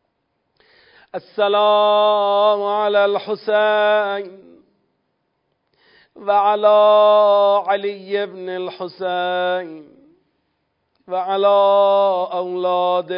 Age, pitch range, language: 40-59, 155-200 Hz, Persian